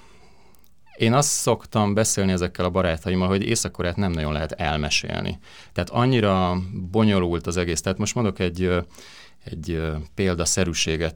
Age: 30-49